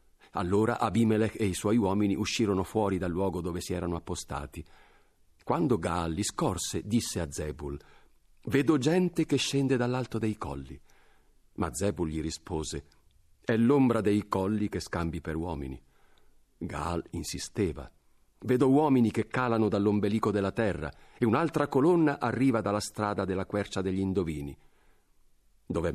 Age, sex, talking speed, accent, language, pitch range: 50-69, male, 140 wpm, native, Italian, 80-105 Hz